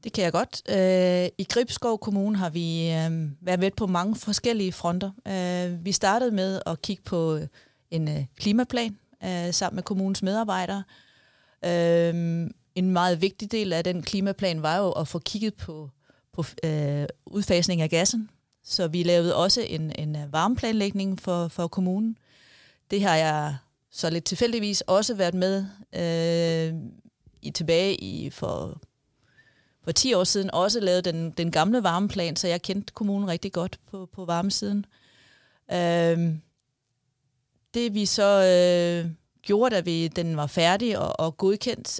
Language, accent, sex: Danish, native, female